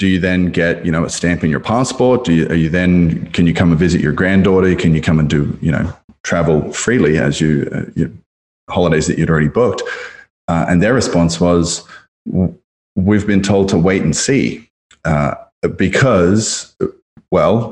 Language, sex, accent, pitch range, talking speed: English, male, Australian, 80-95 Hz, 190 wpm